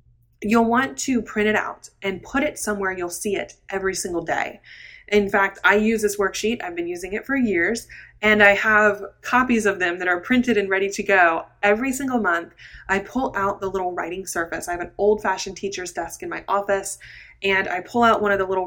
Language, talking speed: English, 220 wpm